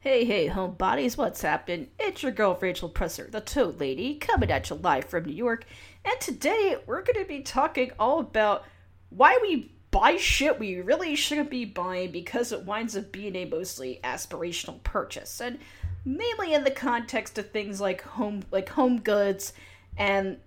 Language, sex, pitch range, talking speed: English, female, 175-240 Hz, 175 wpm